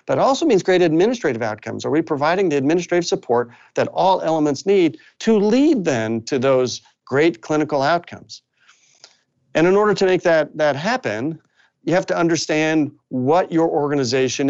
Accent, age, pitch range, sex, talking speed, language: American, 50-69, 130-170 Hz, male, 165 wpm, English